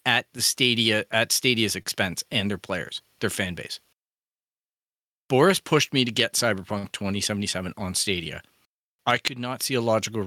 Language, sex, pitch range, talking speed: English, male, 100-130 Hz, 160 wpm